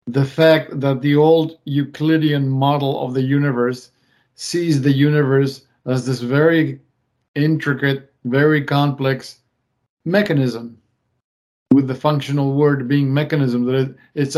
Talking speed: 115 wpm